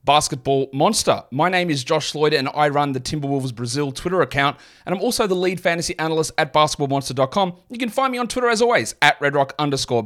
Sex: male